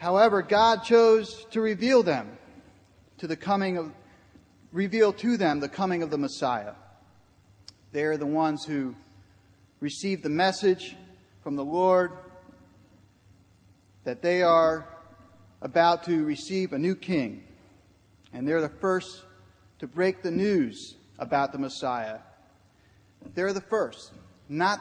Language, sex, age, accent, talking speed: English, male, 40-59, American, 130 wpm